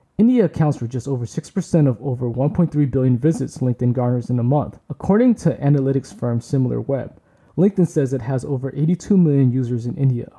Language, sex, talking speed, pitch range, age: English, male, 180 wpm, 125-160 Hz, 20-39